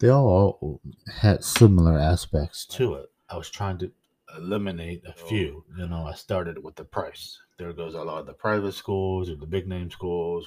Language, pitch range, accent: English, 80-100 Hz, American